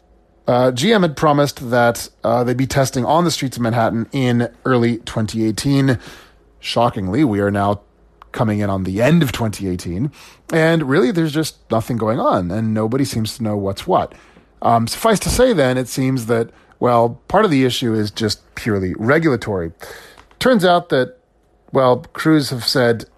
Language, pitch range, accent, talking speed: English, 110-140 Hz, American, 170 wpm